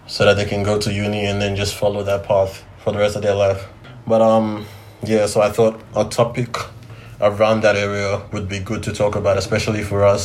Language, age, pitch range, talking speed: English, 20-39, 100-110 Hz, 230 wpm